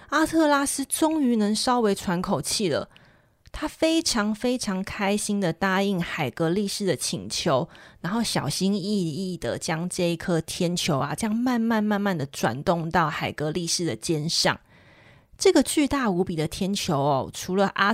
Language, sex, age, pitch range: Chinese, female, 20-39, 170-225 Hz